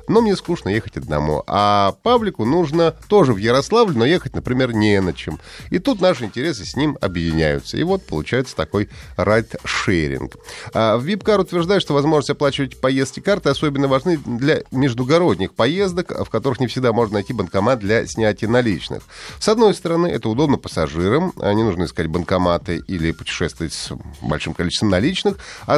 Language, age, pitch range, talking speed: Russian, 30-49, 100-160 Hz, 160 wpm